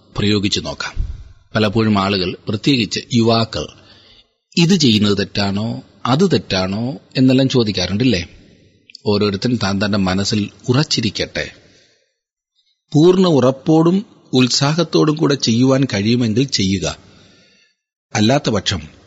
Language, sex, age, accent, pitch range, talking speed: Malayalam, male, 40-59, native, 105-145 Hz, 80 wpm